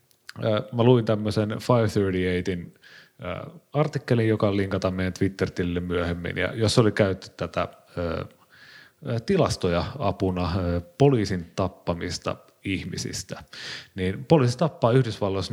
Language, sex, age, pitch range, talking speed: Finnish, male, 30-49, 90-115 Hz, 100 wpm